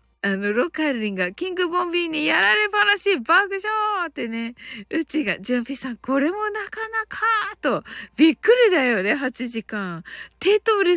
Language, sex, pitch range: Japanese, female, 215-345 Hz